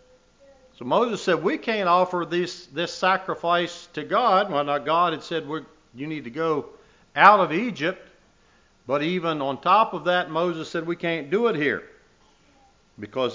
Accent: American